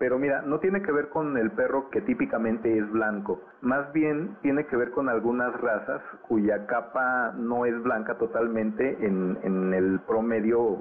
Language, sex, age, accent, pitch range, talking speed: Spanish, male, 50-69, Mexican, 110-130 Hz, 170 wpm